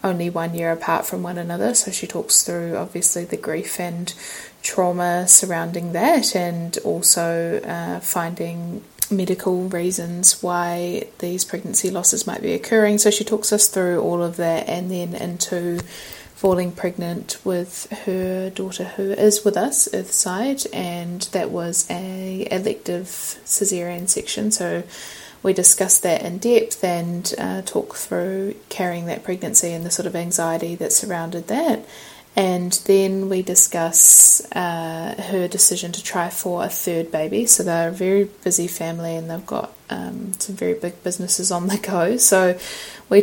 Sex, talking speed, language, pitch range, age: female, 155 wpm, English, 170-200 Hz, 20-39